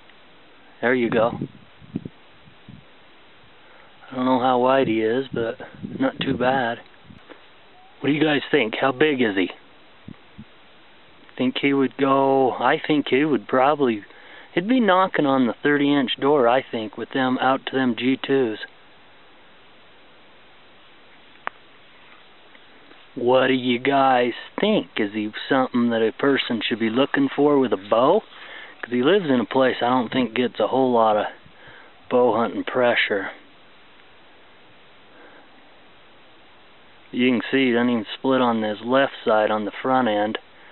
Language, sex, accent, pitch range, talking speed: English, male, American, 115-135 Hz, 145 wpm